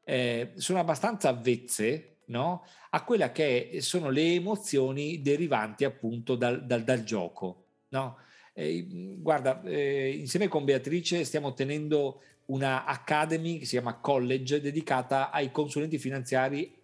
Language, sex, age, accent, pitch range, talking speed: Italian, male, 40-59, native, 110-150 Hz, 130 wpm